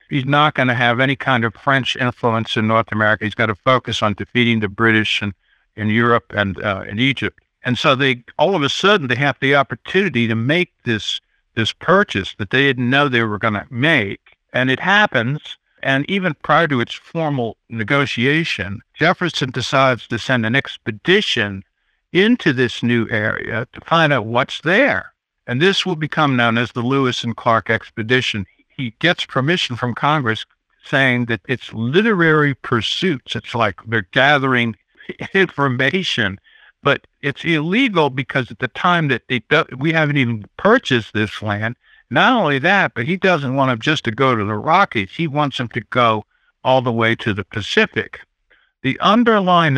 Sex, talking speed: male, 175 wpm